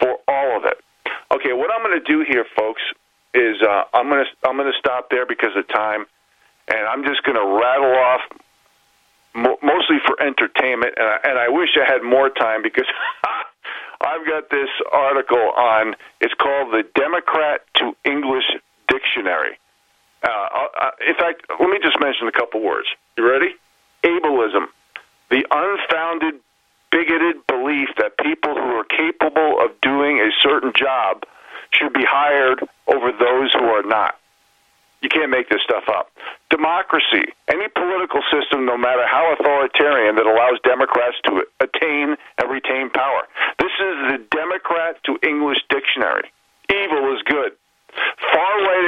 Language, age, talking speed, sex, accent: English, 50-69, 155 wpm, male, American